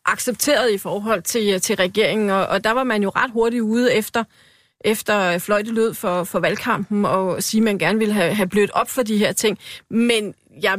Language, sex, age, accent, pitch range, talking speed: Danish, female, 30-49, native, 195-240 Hz, 205 wpm